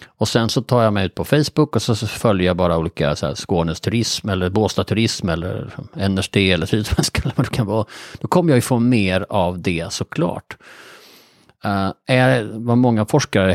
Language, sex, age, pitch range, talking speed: Swedish, male, 30-49, 90-120 Hz, 200 wpm